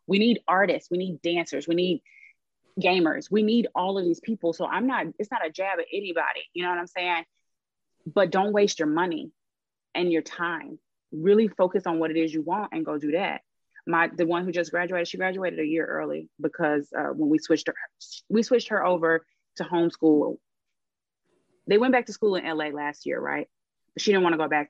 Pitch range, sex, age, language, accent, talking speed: 160-220 Hz, female, 30-49, English, American, 215 wpm